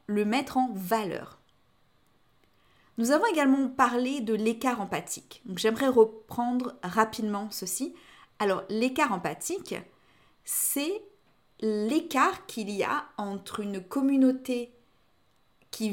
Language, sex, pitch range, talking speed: French, female, 200-275 Hz, 100 wpm